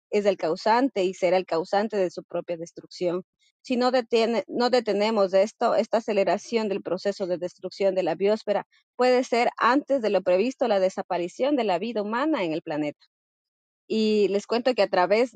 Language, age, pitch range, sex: Spanish, 30-49, 185-235 Hz, female